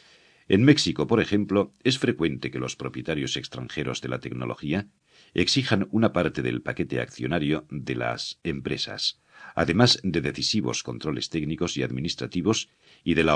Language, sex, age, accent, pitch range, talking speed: Spanish, male, 60-79, Spanish, 65-110 Hz, 145 wpm